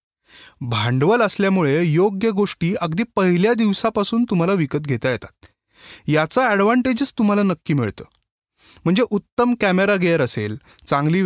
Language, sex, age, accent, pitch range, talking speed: Marathi, male, 20-39, native, 150-210 Hz, 85 wpm